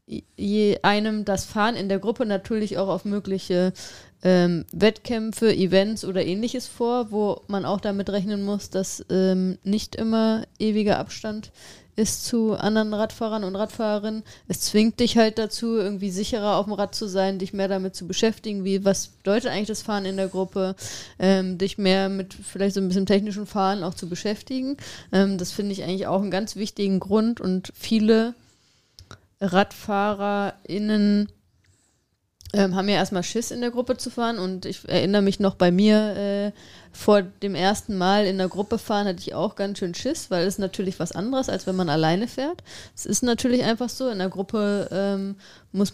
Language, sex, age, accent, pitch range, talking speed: German, female, 20-39, German, 185-215 Hz, 180 wpm